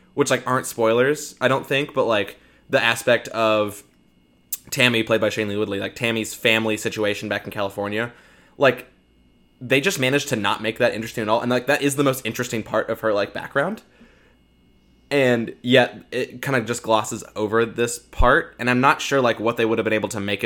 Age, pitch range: 20-39, 105-125 Hz